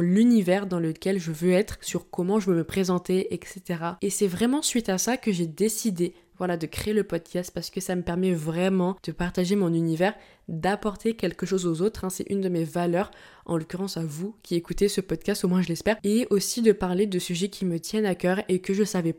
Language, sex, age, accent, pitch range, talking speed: French, female, 20-39, French, 175-210 Hz, 235 wpm